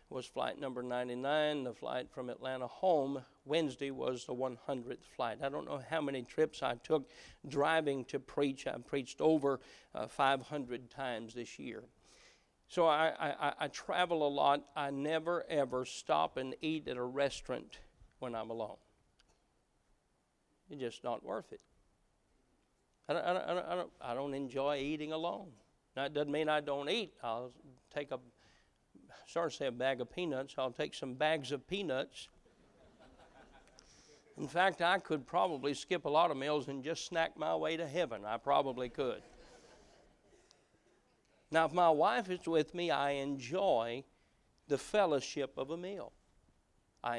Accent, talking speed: American, 165 wpm